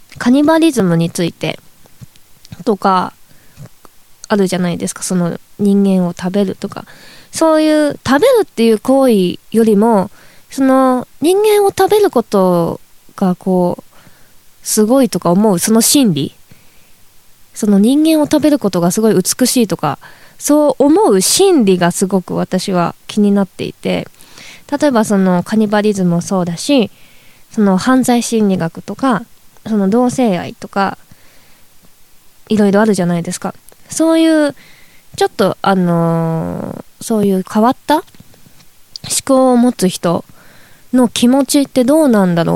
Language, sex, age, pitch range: Japanese, female, 20-39, 185-255 Hz